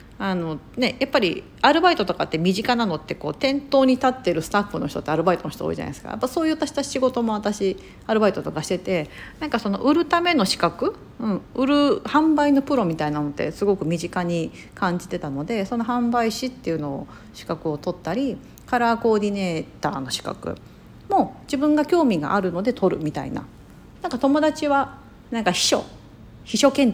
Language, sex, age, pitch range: Japanese, female, 40-59, 170-260 Hz